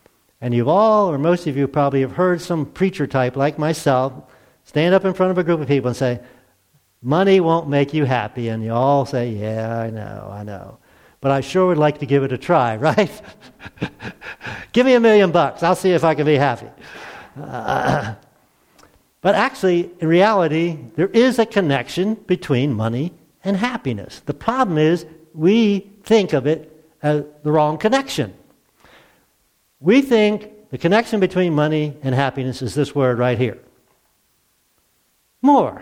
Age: 60-79